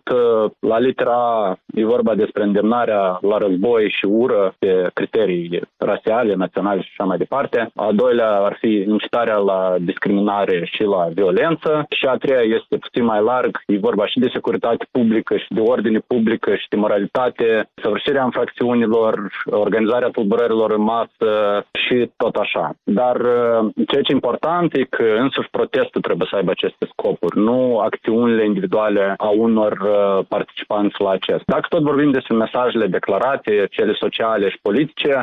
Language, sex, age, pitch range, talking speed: Romanian, male, 20-39, 105-155 Hz, 155 wpm